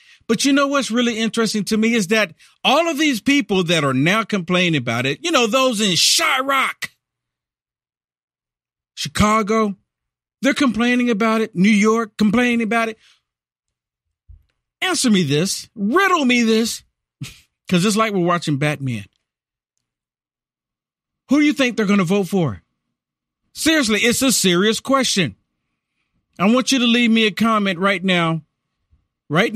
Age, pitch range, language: 50-69, 165-235 Hz, English